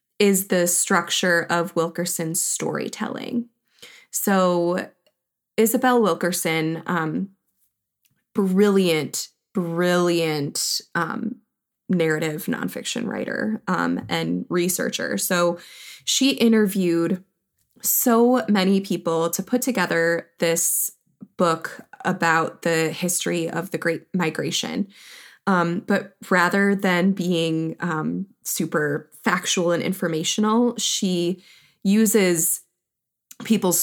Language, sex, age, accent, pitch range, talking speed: English, female, 20-39, American, 165-215 Hz, 90 wpm